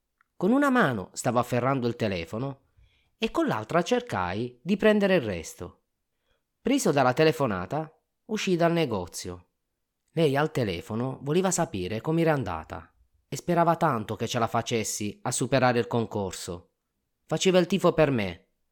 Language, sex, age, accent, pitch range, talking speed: Italian, male, 30-49, native, 100-150 Hz, 140 wpm